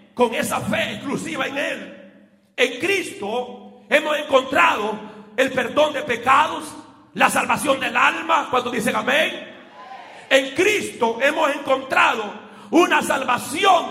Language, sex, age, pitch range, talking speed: Spanish, male, 40-59, 235-295 Hz, 115 wpm